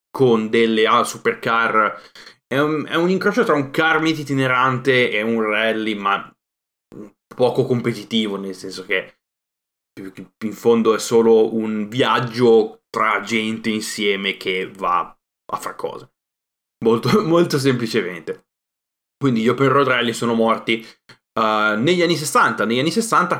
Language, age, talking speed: Italian, 20-39, 140 wpm